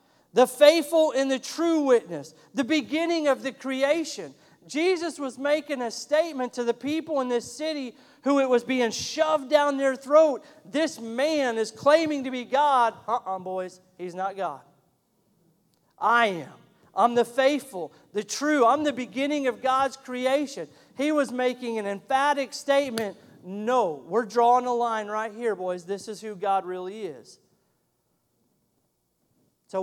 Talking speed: 155 wpm